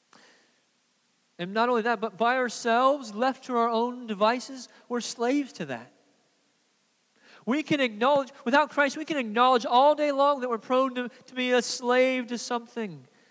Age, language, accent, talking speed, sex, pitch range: 40-59, English, American, 165 wpm, male, 180-245 Hz